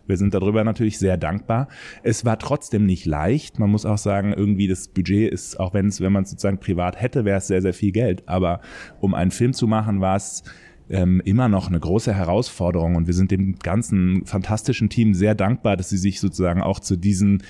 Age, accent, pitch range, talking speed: 30-49, German, 100-120 Hz, 220 wpm